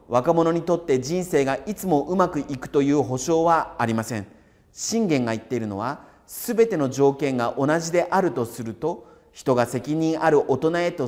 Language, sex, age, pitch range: Japanese, male, 40-59, 115-170 Hz